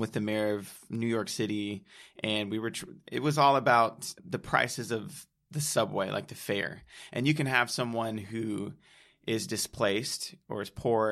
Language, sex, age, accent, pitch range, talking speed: English, male, 20-39, American, 105-135 Hz, 180 wpm